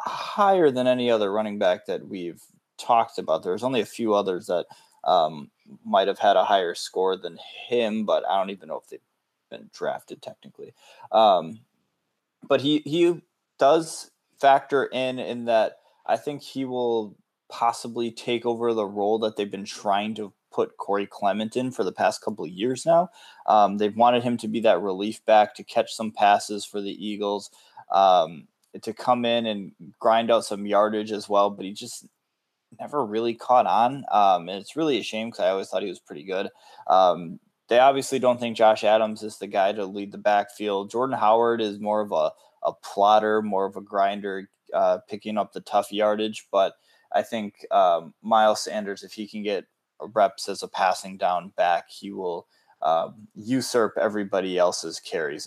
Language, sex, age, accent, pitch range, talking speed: English, male, 20-39, American, 105-130 Hz, 185 wpm